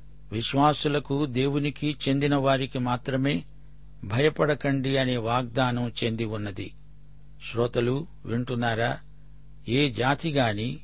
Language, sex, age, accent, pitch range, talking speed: Telugu, male, 60-79, native, 120-145 Hz, 70 wpm